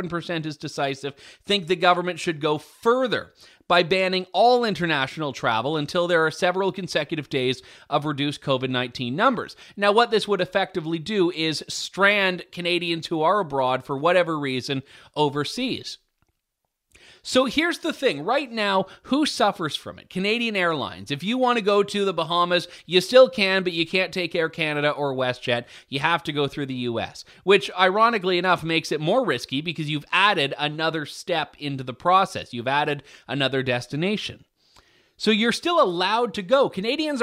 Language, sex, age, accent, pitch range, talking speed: English, male, 30-49, American, 145-200 Hz, 170 wpm